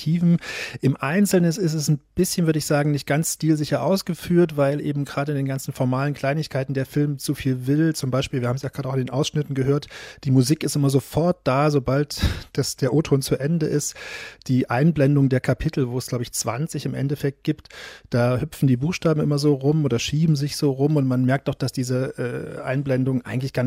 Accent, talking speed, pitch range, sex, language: German, 210 wpm, 130-150 Hz, male, German